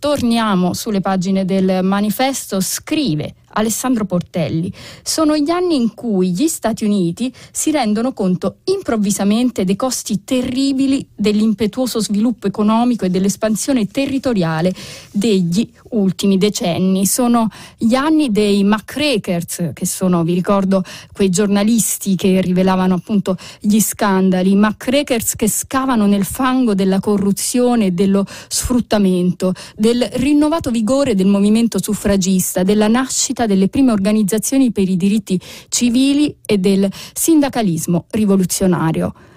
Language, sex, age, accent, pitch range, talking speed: Italian, female, 30-49, native, 190-250 Hz, 115 wpm